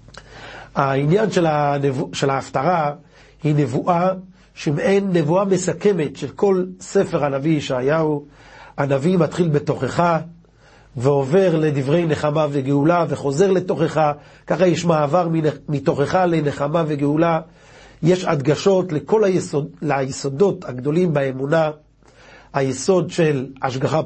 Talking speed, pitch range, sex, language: 95 wpm, 140-175 Hz, male, Hebrew